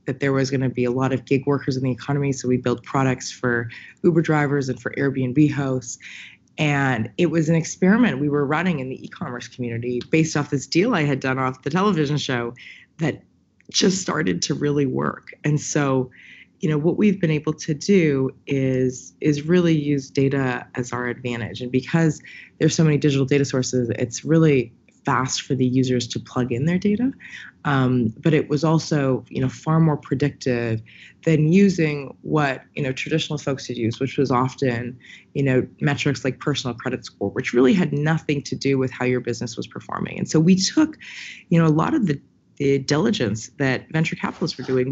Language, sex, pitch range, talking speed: Finnish, female, 125-155 Hz, 200 wpm